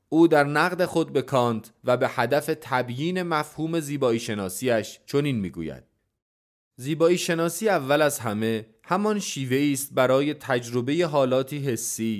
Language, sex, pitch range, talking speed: Persian, male, 115-155 Hz, 130 wpm